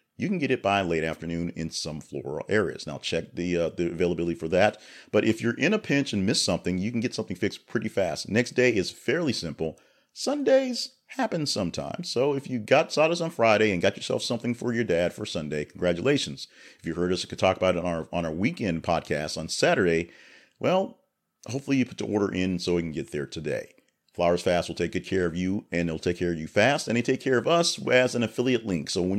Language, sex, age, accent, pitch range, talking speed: English, male, 40-59, American, 85-125 Hz, 240 wpm